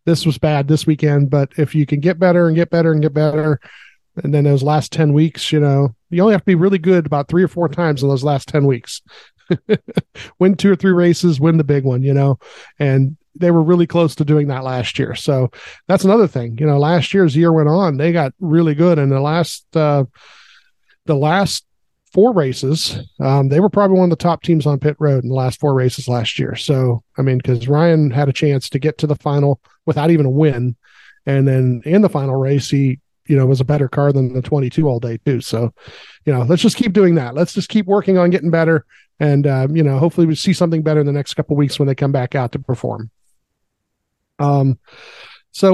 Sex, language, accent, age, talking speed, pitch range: male, English, American, 40-59, 235 wpm, 135-170 Hz